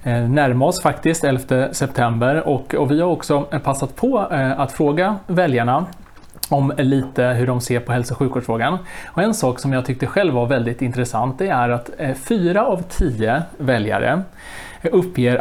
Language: Swedish